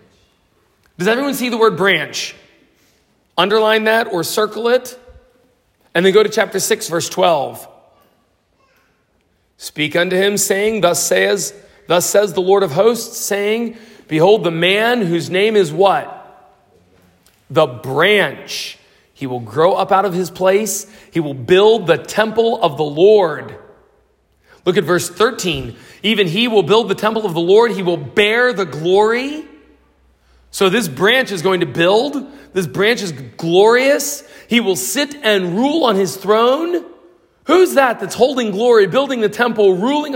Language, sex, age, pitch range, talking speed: English, male, 40-59, 190-250 Hz, 155 wpm